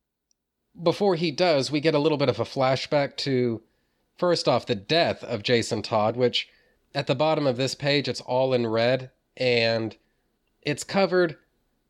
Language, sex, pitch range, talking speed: English, male, 120-145 Hz, 165 wpm